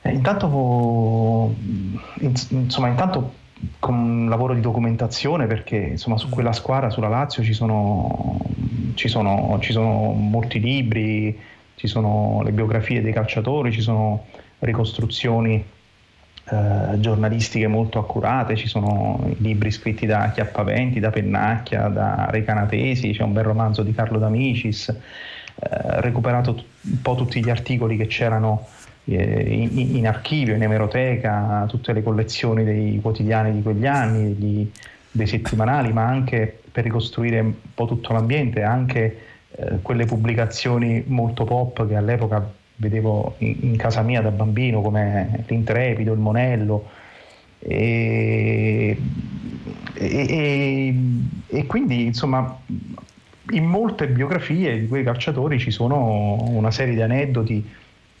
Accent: native